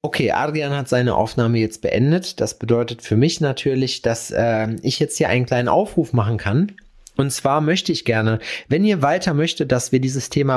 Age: 30-49